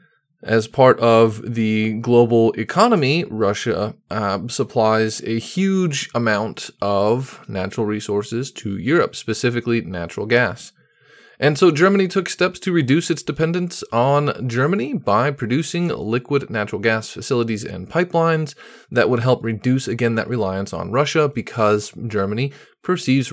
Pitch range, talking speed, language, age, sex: 110-160 Hz, 130 wpm, English, 20-39, male